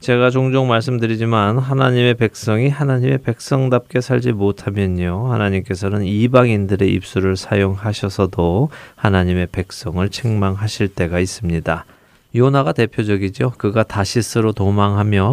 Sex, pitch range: male, 95-125 Hz